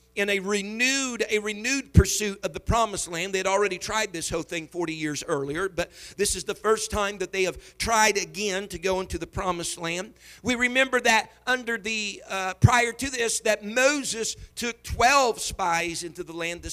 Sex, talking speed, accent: male, 195 wpm, American